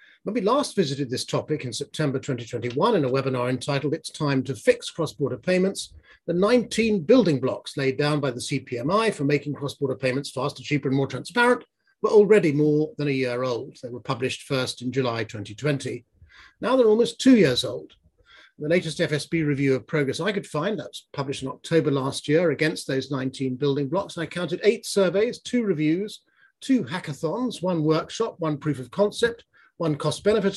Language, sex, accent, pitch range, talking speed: English, male, British, 135-195 Hz, 185 wpm